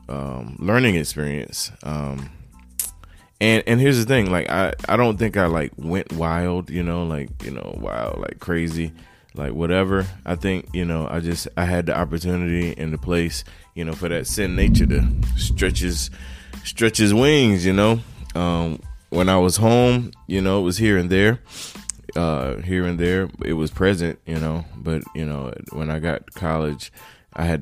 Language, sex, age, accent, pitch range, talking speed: English, male, 20-39, American, 75-95 Hz, 185 wpm